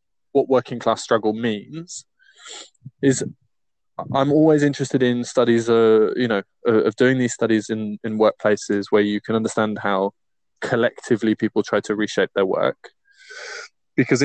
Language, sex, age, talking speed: English, male, 20-39, 145 wpm